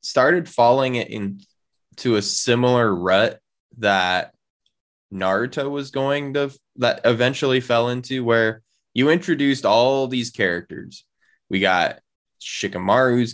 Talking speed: 110 wpm